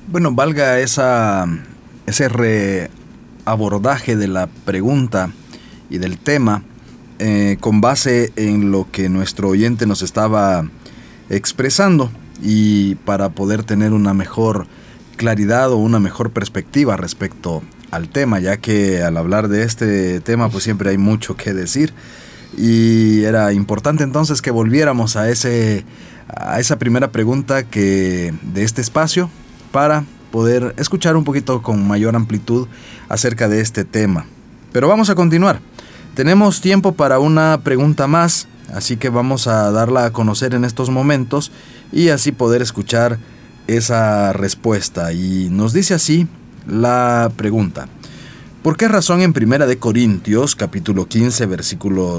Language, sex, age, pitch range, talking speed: Spanish, male, 40-59, 100-135 Hz, 135 wpm